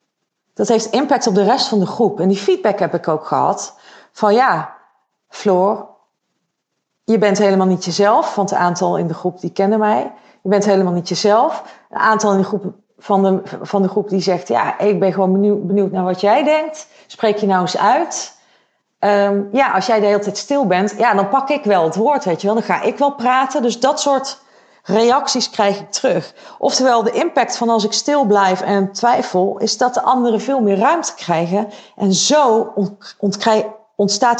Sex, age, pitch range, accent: female, 40-59, 190-230 Hz, Dutch